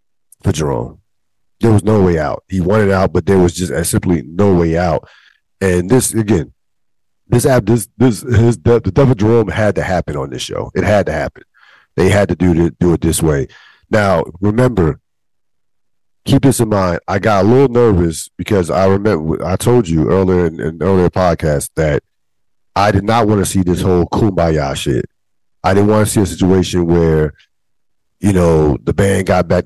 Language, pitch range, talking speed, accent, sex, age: English, 85-105 Hz, 200 wpm, American, male, 40-59